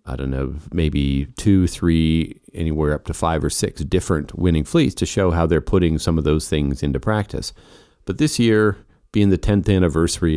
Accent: American